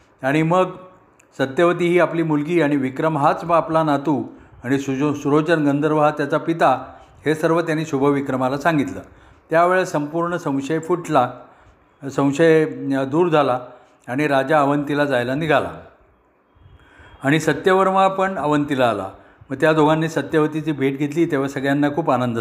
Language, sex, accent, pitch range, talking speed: Marathi, male, native, 135-165 Hz, 135 wpm